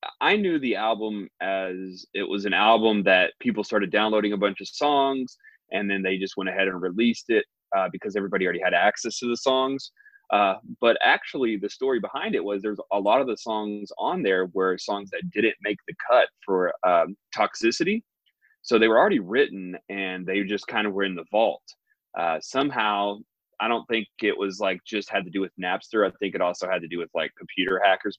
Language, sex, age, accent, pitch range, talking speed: English, male, 30-49, American, 95-120 Hz, 215 wpm